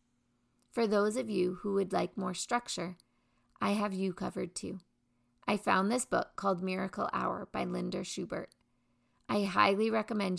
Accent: American